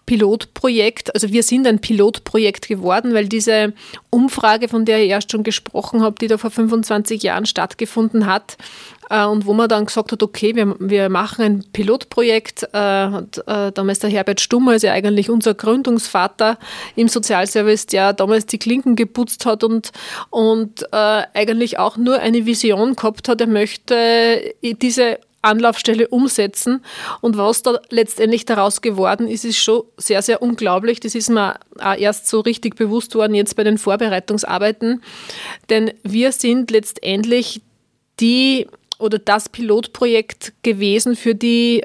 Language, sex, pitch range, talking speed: German, female, 215-235 Hz, 155 wpm